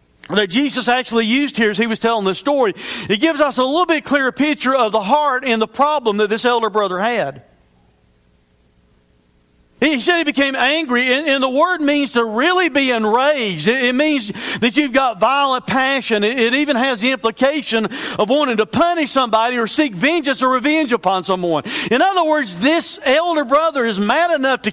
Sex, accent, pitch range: male, American, 220-275 Hz